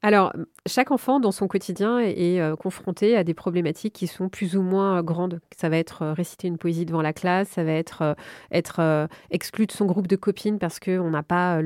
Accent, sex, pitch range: French, female, 170-210 Hz